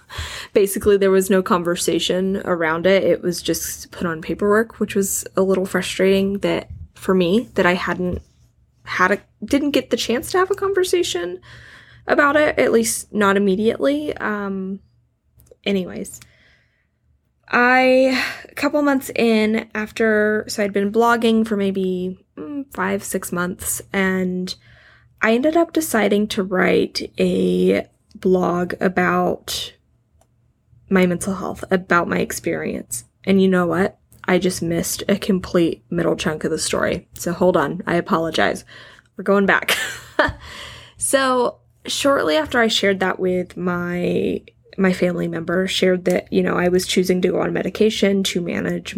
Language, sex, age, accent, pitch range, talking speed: English, female, 10-29, American, 180-220 Hz, 145 wpm